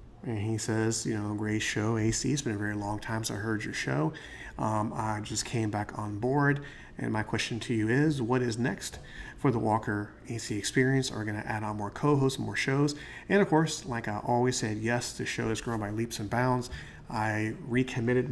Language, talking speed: English, 220 wpm